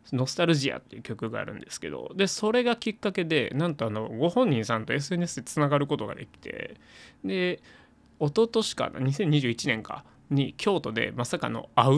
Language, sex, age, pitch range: Japanese, male, 20-39, 115-165 Hz